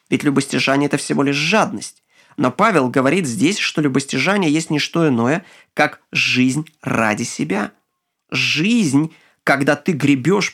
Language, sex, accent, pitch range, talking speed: Ukrainian, male, native, 135-205 Hz, 140 wpm